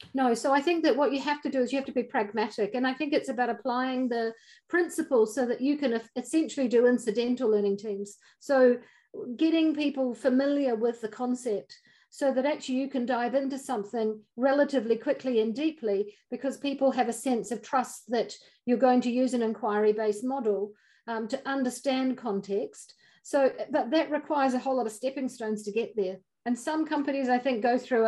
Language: English